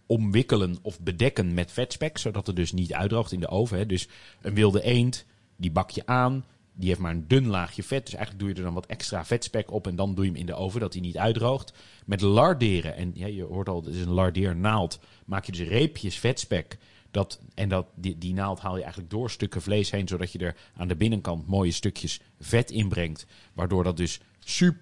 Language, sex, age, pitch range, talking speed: Dutch, male, 40-59, 90-110 Hz, 225 wpm